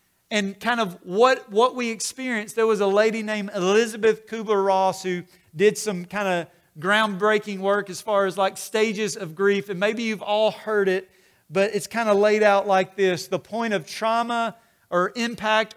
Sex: male